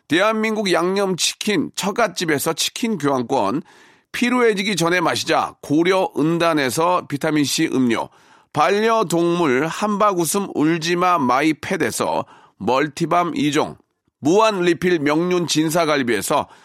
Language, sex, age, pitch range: Korean, male, 40-59, 165-210 Hz